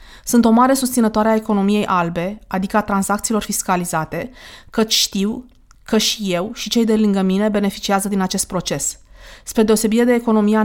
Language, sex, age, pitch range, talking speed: Romanian, female, 20-39, 195-235 Hz, 165 wpm